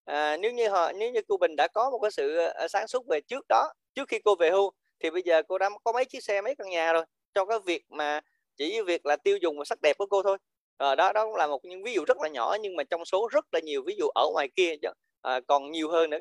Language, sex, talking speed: Vietnamese, male, 295 wpm